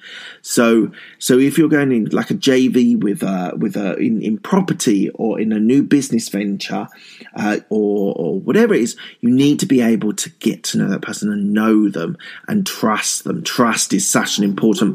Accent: British